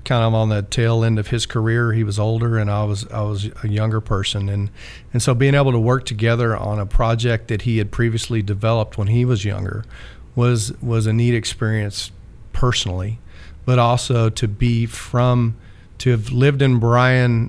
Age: 40-59